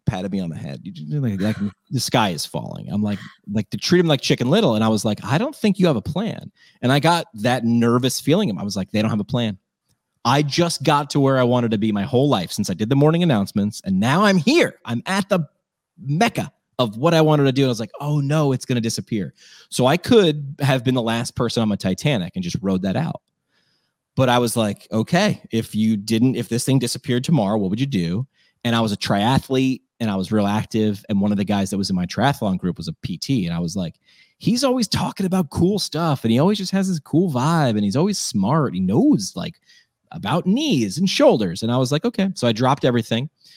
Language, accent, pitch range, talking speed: English, American, 110-160 Hz, 250 wpm